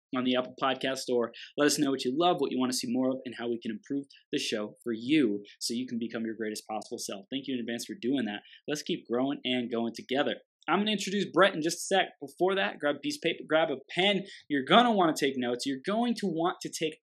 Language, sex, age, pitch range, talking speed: English, male, 20-39, 120-165 Hz, 280 wpm